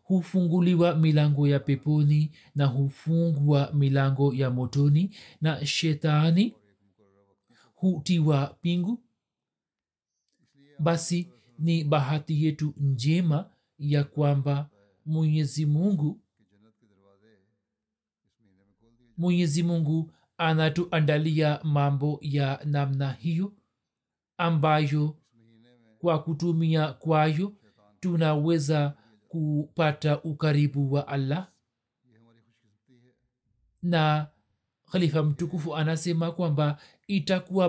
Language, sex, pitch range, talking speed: Swahili, male, 140-170 Hz, 70 wpm